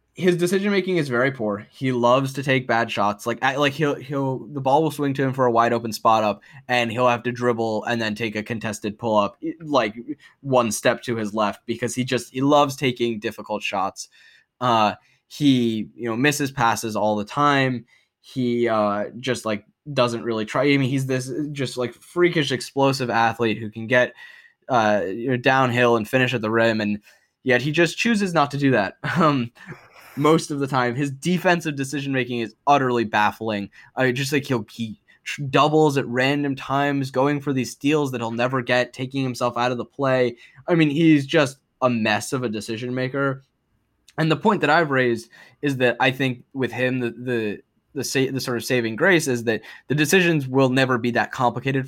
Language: English